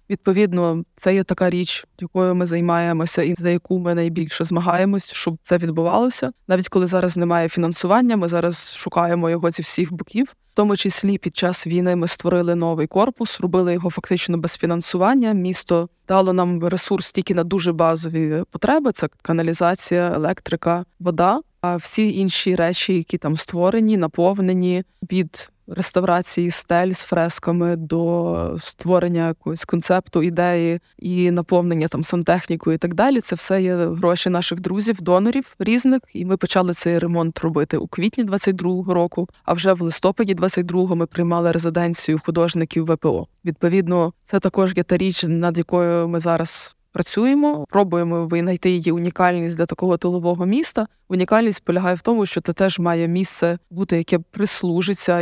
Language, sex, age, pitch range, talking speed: Ukrainian, female, 20-39, 170-185 Hz, 155 wpm